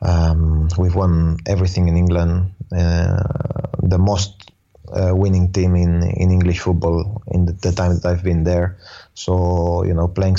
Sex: male